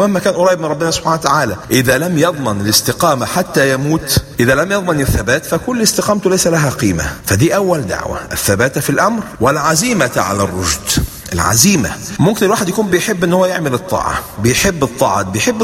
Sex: male